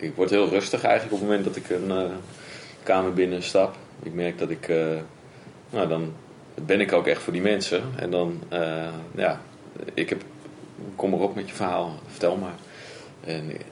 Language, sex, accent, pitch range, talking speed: Dutch, male, Dutch, 80-95 Hz, 195 wpm